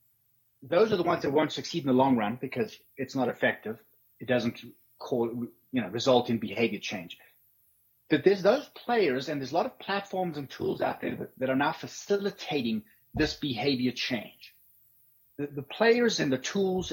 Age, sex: 30-49, male